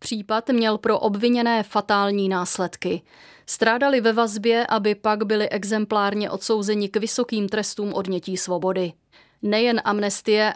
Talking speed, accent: 120 wpm, native